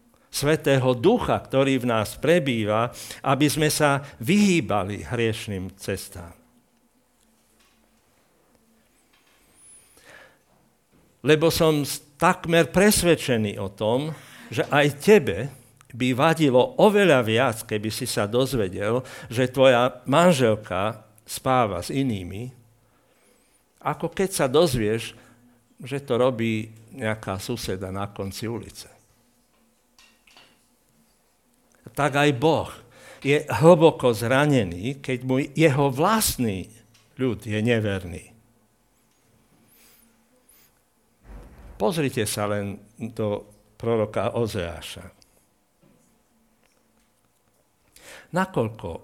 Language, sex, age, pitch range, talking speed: Slovak, male, 60-79, 110-140 Hz, 80 wpm